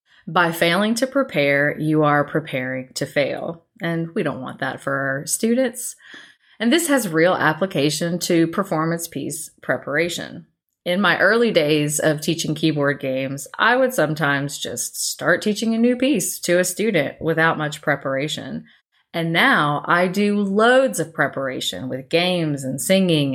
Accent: American